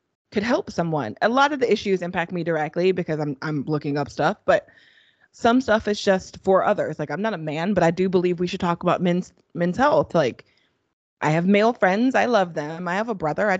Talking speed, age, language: 235 wpm, 20-39, English